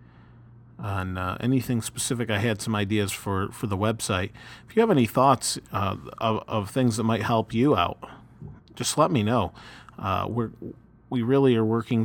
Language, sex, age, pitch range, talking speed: English, male, 40-59, 105-125 Hz, 180 wpm